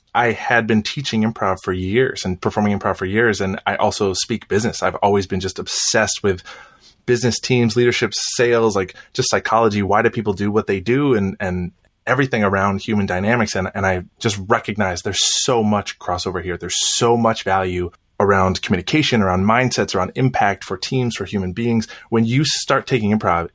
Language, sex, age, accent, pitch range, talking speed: English, male, 20-39, American, 95-115 Hz, 185 wpm